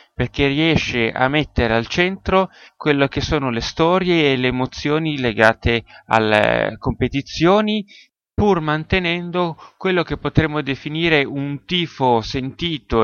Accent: native